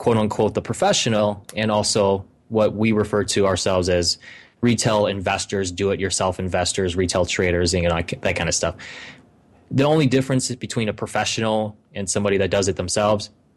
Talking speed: 155 wpm